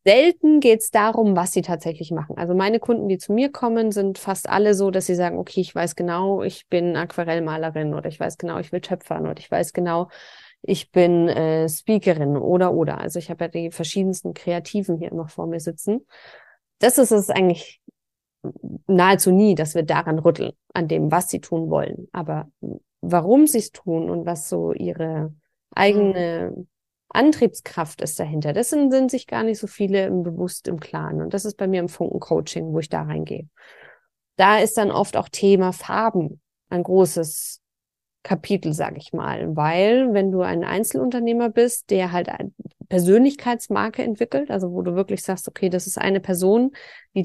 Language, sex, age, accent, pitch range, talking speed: German, female, 20-39, German, 170-215 Hz, 185 wpm